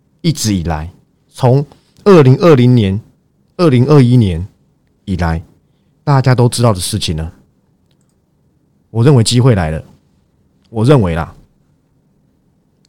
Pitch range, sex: 105-155 Hz, male